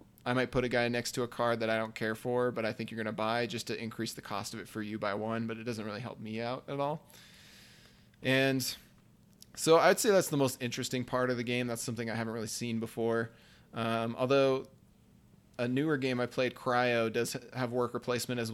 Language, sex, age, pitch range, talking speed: English, male, 20-39, 115-125 Hz, 235 wpm